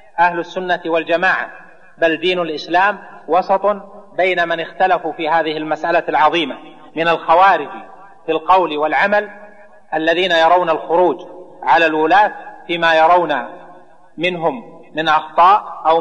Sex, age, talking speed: male, 40-59, 110 wpm